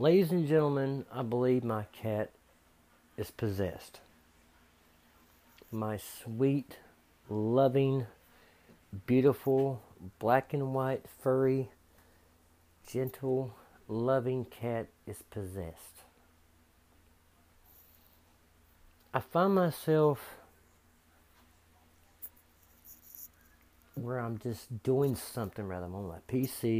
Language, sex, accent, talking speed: English, male, American, 80 wpm